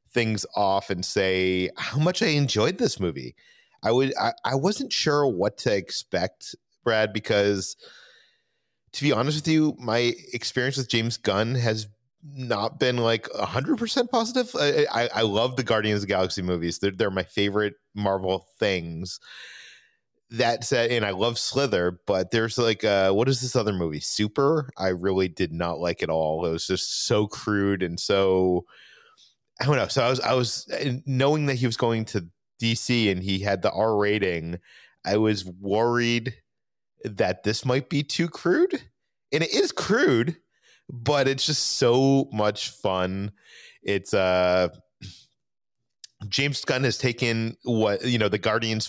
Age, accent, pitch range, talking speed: 30-49, American, 95-130 Hz, 165 wpm